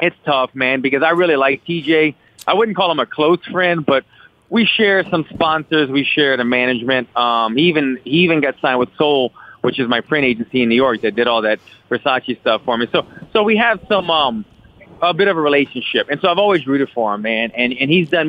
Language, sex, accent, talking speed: English, male, American, 235 wpm